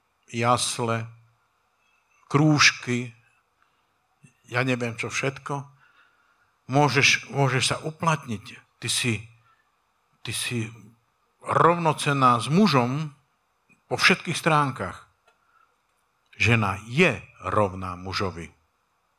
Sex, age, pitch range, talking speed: male, 50-69, 115-155 Hz, 70 wpm